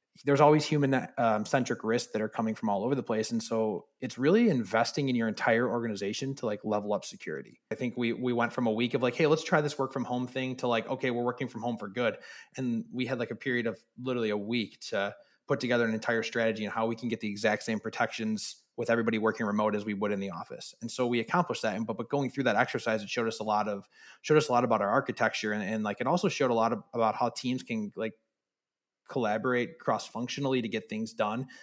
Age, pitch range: 20-39, 110-130 Hz